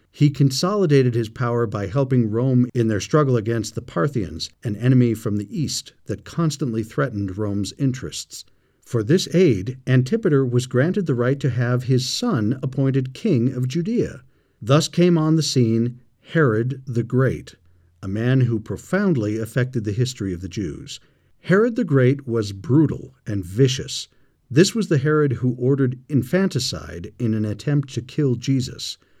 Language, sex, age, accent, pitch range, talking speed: English, male, 50-69, American, 110-150 Hz, 160 wpm